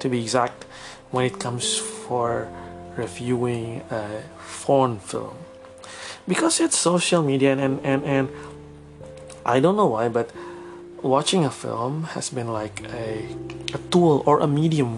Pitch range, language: 120-155 Hz, Indonesian